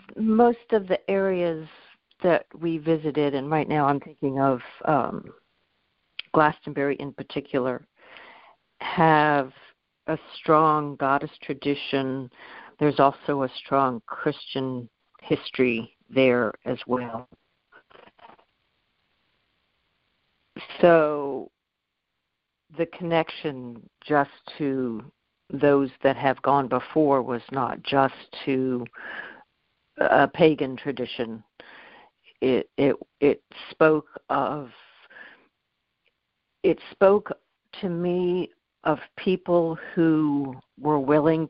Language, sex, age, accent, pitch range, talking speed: English, female, 60-79, American, 135-165 Hz, 90 wpm